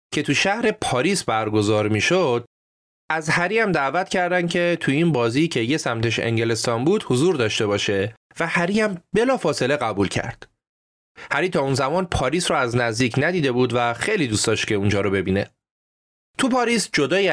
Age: 30-49